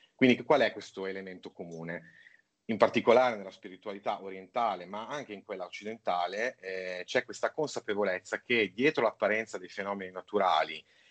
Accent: native